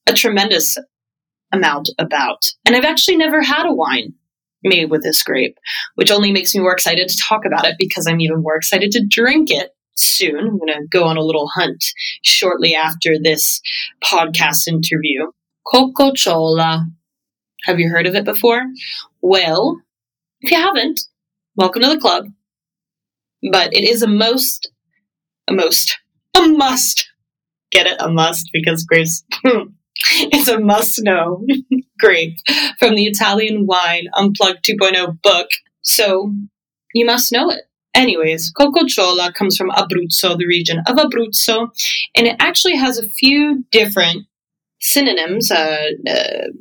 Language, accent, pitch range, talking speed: English, American, 165-235 Hz, 145 wpm